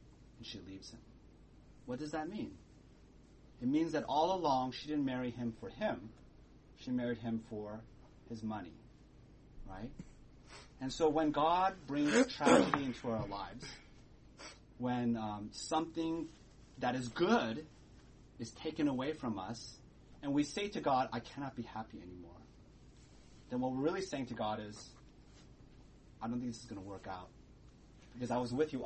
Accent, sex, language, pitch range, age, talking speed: American, male, English, 110-140 Hz, 30-49, 160 wpm